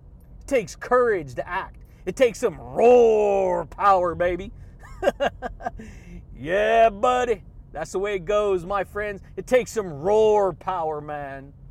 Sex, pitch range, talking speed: male, 185-240 Hz, 135 wpm